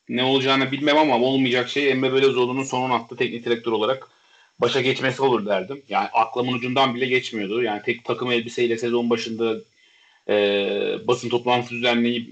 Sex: male